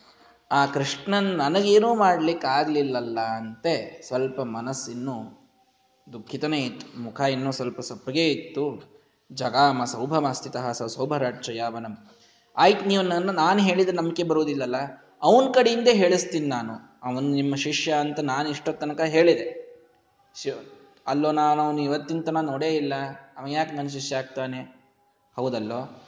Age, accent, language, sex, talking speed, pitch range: 20-39, native, Kannada, male, 110 wpm, 130-165 Hz